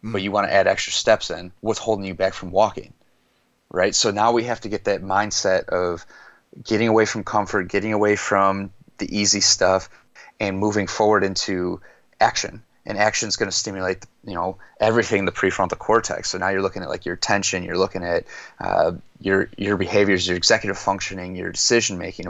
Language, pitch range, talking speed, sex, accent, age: English, 95-105 Hz, 195 wpm, male, American, 30-49